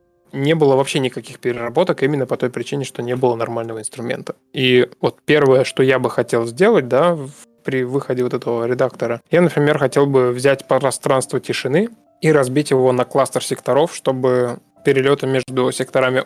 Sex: male